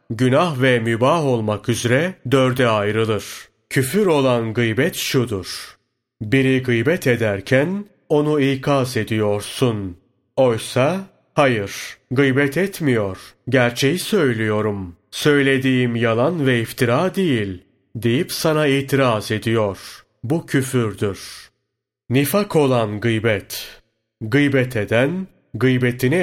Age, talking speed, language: 30-49, 90 wpm, Turkish